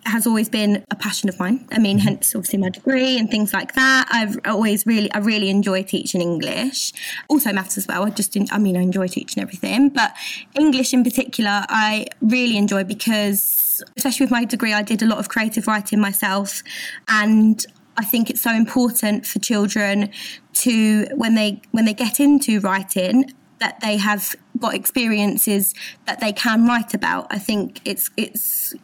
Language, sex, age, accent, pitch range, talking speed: English, female, 20-39, British, 205-240 Hz, 185 wpm